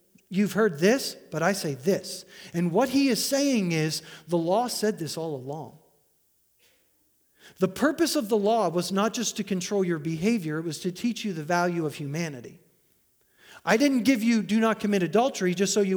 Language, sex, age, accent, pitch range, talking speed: English, male, 40-59, American, 200-275 Hz, 190 wpm